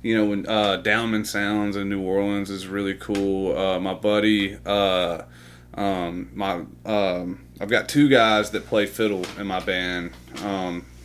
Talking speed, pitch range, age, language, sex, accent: 165 wpm, 85-105 Hz, 30-49, English, male, American